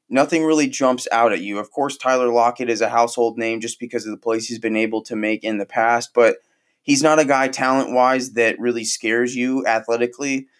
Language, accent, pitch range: English, American, 115-135 Hz